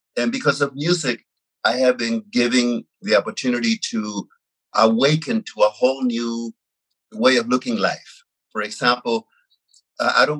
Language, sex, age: English, male, 50-69